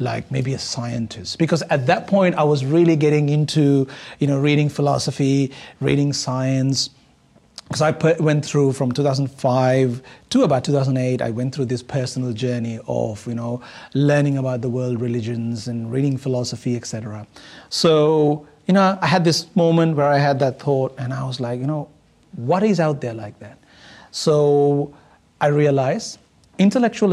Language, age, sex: English, 30-49, male